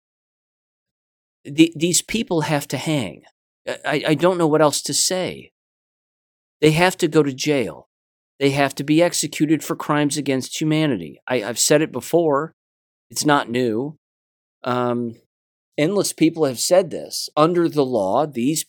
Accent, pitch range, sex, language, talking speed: American, 120-155 Hz, male, English, 150 wpm